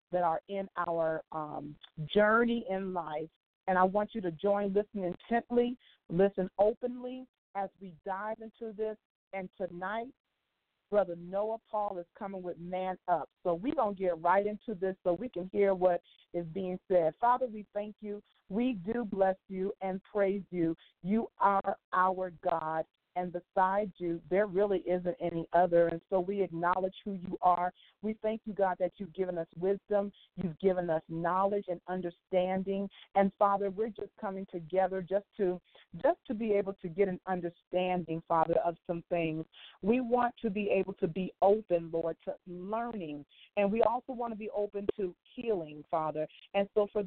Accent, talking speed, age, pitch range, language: American, 175 wpm, 40-59, 180-215 Hz, English